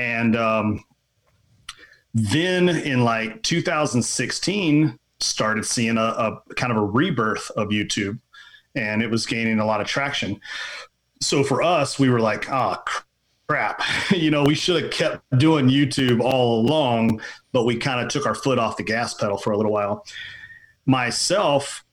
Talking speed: 160 wpm